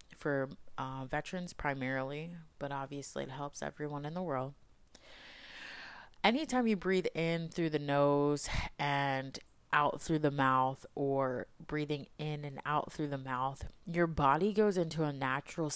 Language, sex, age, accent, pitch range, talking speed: English, female, 30-49, American, 135-165 Hz, 145 wpm